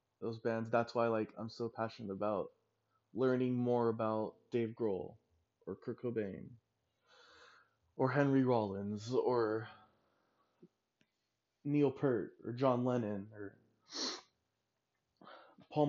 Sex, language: male, English